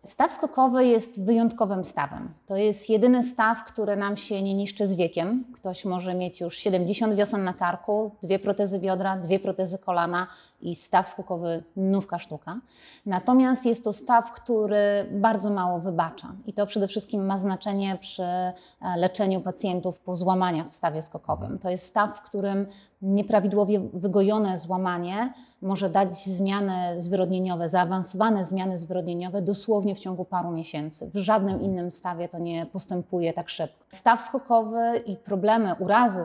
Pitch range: 180-210 Hz